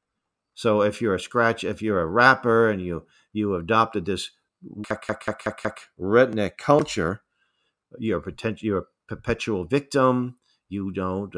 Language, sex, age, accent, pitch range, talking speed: English, male, 50-69, American, 90-110 Hz, 125 wpm